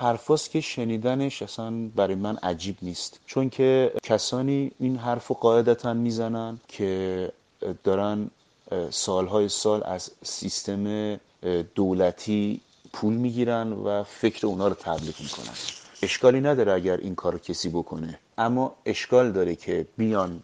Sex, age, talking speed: male, 30-49, 130 wpm